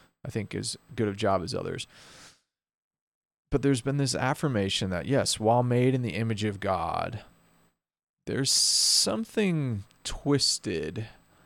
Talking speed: 130 wpm